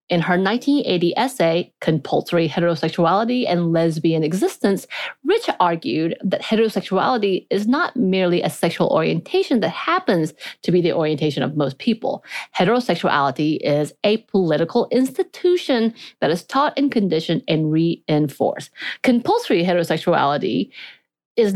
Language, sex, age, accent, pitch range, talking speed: English, female, 30-49, American, 170-240 Hz, 120 wpm